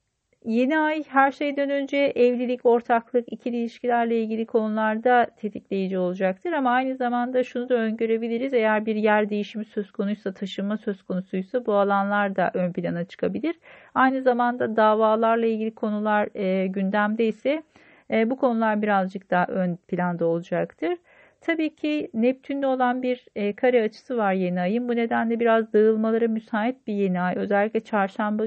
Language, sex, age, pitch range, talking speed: Turkish, female, 40-59, 195-245 Hz, 145 wpm